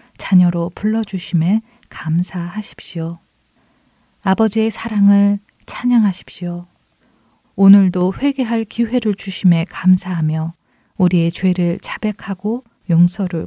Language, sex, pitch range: Korean, female, 175-215 Hz